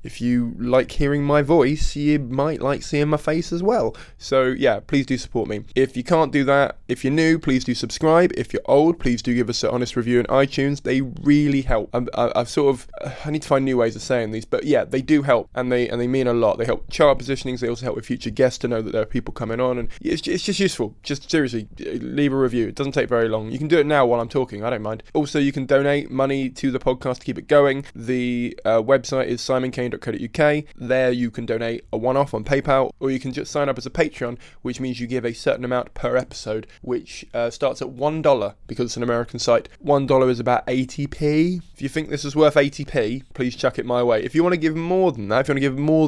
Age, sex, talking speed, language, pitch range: 20-39, male, 260 wpm, English, 120-145 Hz